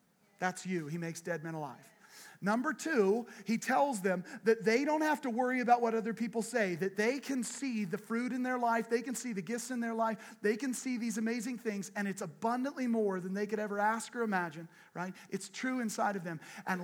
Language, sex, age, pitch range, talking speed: English, male, 40-59, 195-245 Hz, 230 wpm